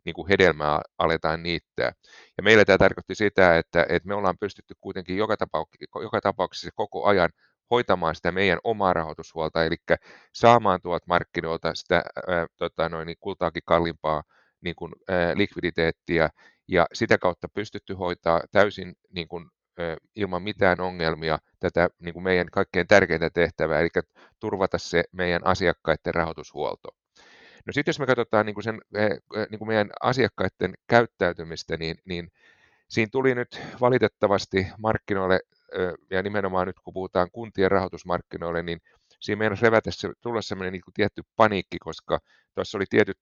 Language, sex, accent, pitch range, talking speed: Finnish, male, native, 85-105 Hz, 140 wpm